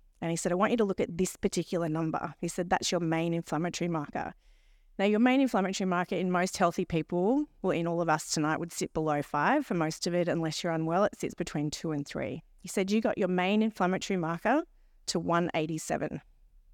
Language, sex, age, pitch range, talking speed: English, female, 40-59, 170-210 Hz, 220 wpm